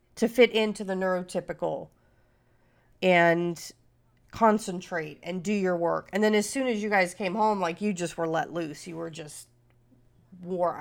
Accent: American